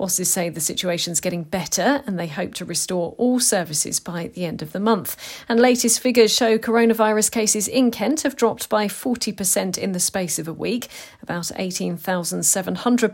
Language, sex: English, female